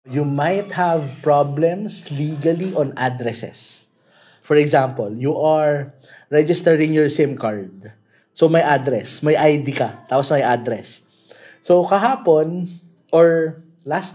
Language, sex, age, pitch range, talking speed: Filipino, male, 20-39, 135-175 Hz, 120 wpm